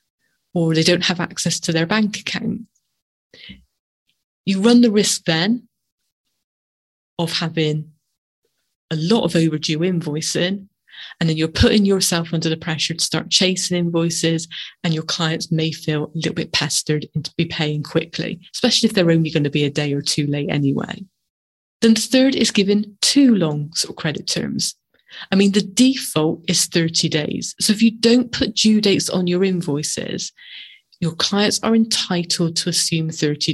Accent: British